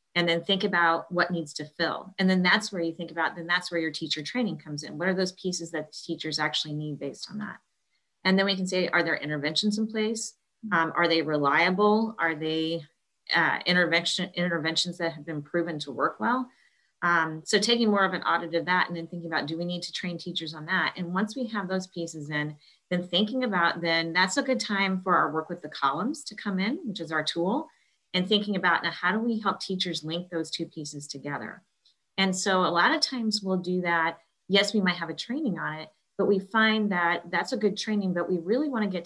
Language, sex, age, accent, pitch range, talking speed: English, female, 30-49, American, 165-200 Hz, 235 wpm